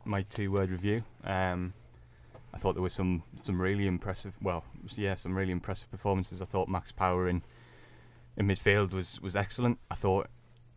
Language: English